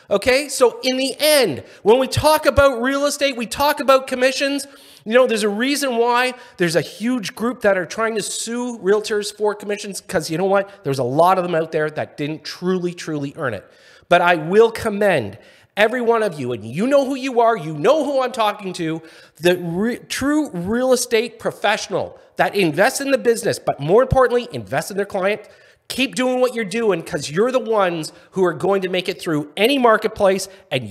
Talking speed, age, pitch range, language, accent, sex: 205 wpm, 40-59, 155-235 Hz, English, American, male